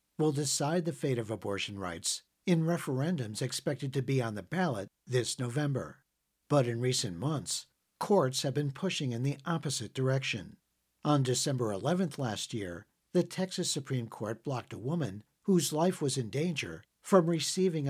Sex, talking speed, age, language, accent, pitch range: male, 160 wpm, 60-79, English, American, 125-160 Hz